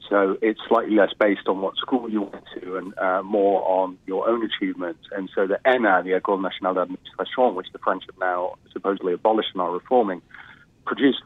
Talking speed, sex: 195 wpm, male